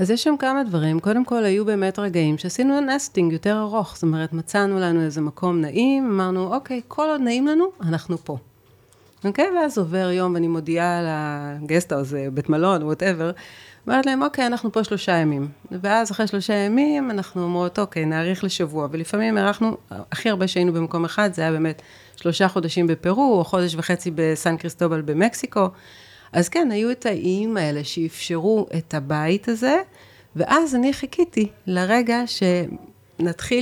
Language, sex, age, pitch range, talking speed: Hebrew, female, 30-49, 160-210 Hz, 160 wpm